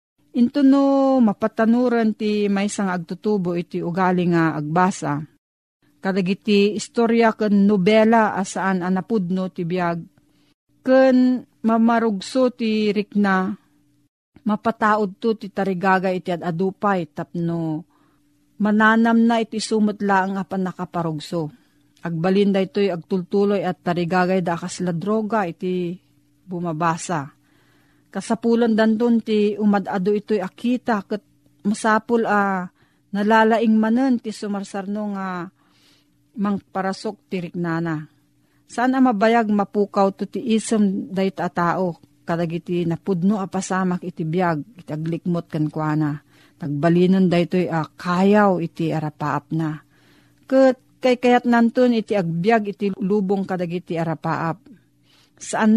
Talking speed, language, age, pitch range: 110 wpm, Filipino, 40-59, 170-215 Hz